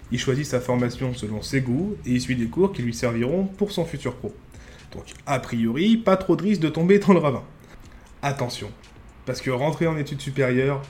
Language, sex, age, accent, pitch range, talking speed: French, male, 20-39, French, 120-160 Hz, 210 wpm